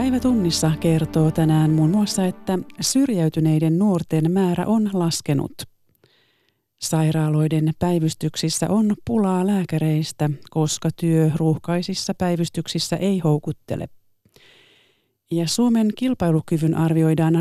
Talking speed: 90 wpm